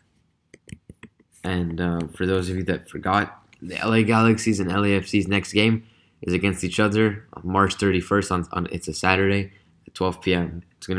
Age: 20-39